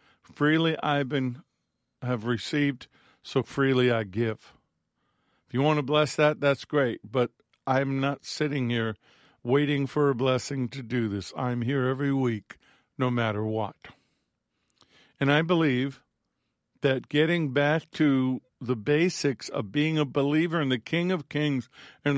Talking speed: 145 wpm